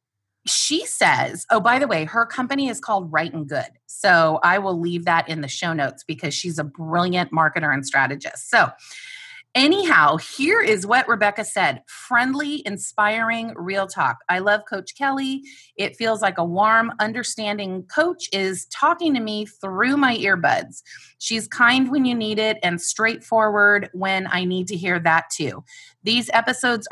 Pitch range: 175-230 Hz